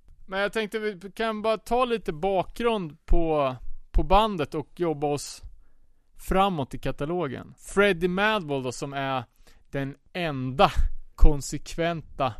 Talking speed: 130 wpm